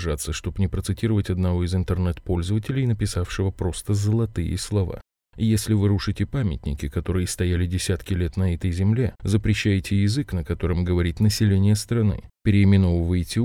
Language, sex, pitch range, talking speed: Russian, male, 90-110 Hz, 130 wpm